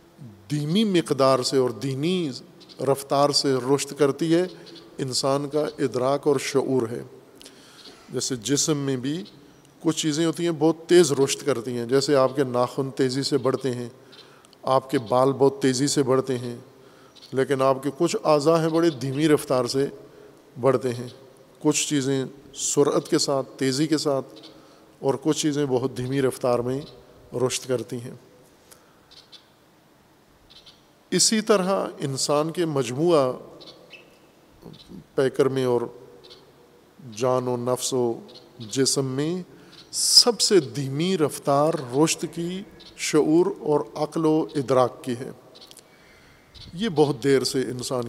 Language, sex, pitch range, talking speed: Urdu, male, 130-155 Hz, 135 wpm